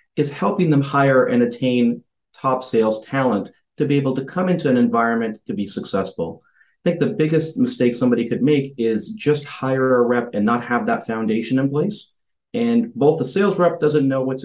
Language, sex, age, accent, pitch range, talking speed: English, male, 40-59, American, 115-150 Hz, 200 wpm